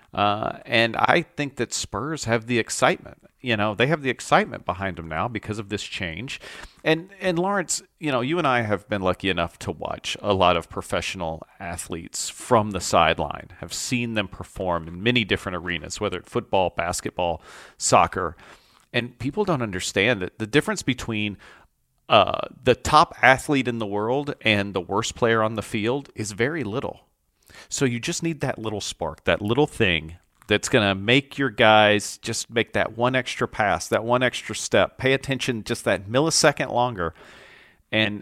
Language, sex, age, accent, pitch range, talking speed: English, male, 40-59, American, 100-130 Hz, 180 wpm